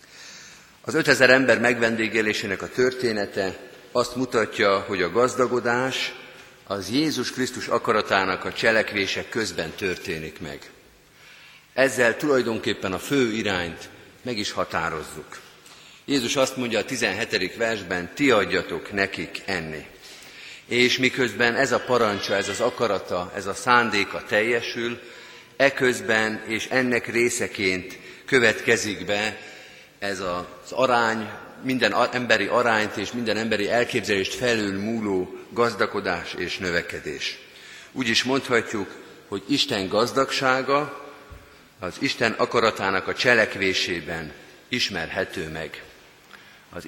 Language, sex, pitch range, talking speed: Hungarian, male, 100-125 Hz, 110 wpm